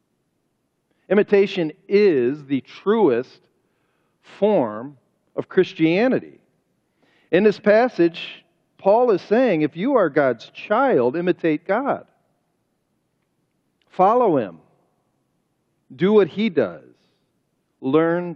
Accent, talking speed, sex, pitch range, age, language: American, 90 wpm, male, 135-190 Hz, 50-69, English